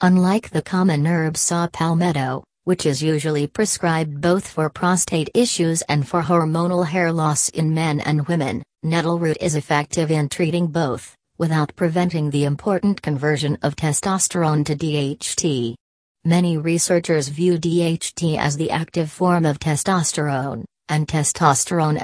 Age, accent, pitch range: 40-59, American, 150-175 Hz